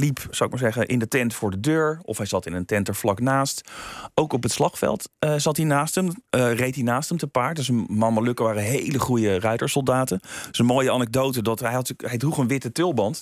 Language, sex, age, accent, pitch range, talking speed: Dutch, male, 40-59, Dutch, 110-140 Hz, 255 wpm